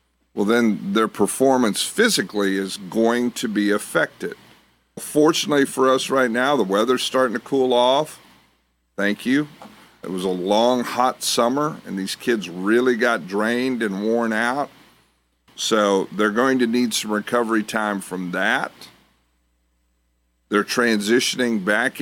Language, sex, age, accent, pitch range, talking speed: English, male, 50-69, American, 90-120 Hz, 140 wpm